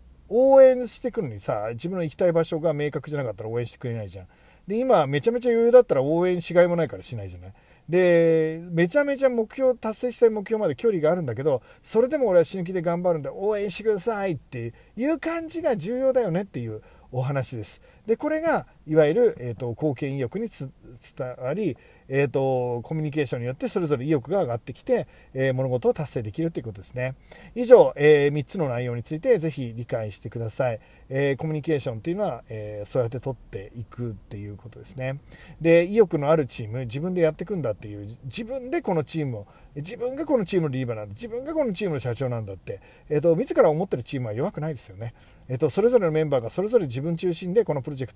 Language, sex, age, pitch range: Japanese, male, 40-59, 125-200 Hz